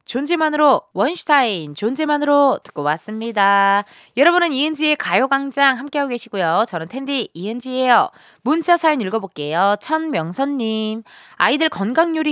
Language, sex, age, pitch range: Korean, female, 20-39, 185-300 Hz